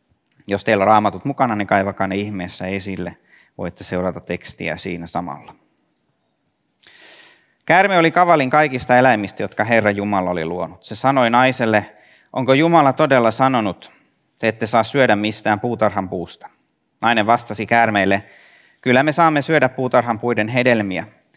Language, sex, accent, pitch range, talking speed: Finnish, male, native, 100-130 Hz, 140 wpm